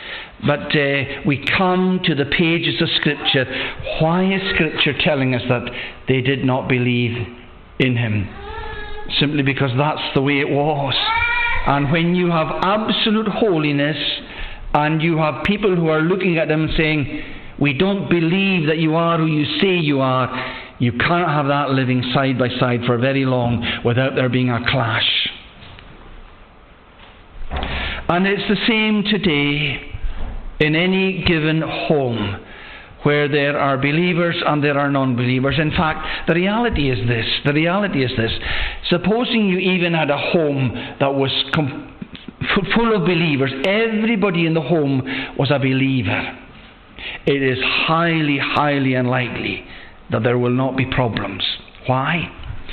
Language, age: English, 50-69